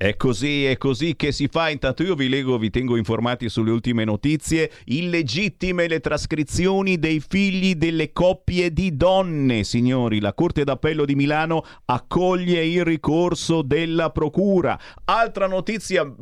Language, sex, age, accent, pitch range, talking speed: Italian, male, 40-59, native, 105-170 Hz, 145 wpm